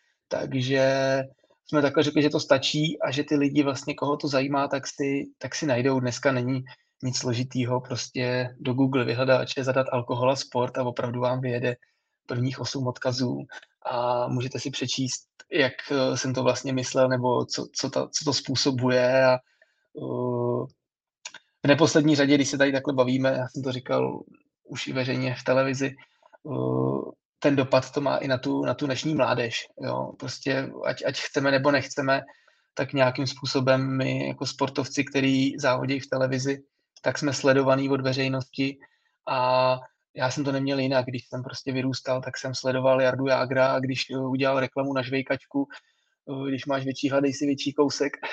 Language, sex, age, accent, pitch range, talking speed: Czech, male, 20-39, native, 130-140 Hz, 170 wpm